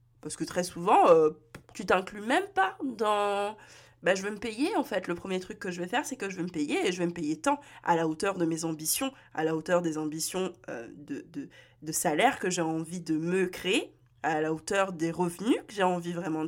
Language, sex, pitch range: French, female, 165-210 Hz